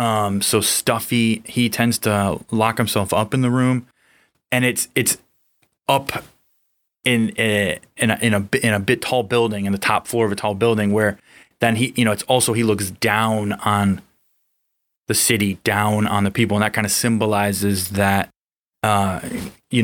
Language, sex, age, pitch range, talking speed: English, male, 20-39, 100-115 Hz, 180 wpm